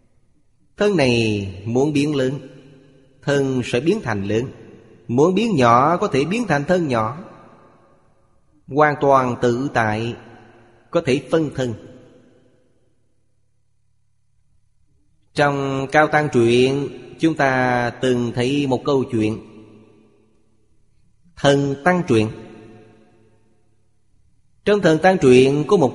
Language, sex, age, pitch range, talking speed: Vietnamese, male, 30-49, 115-140 Hz, 110 wpm